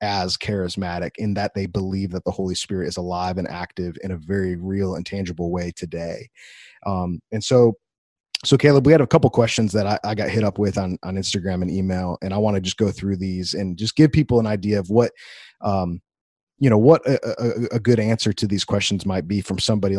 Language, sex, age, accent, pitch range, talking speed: English, male, 30-49, American, 95-115 Hz, 230 wpm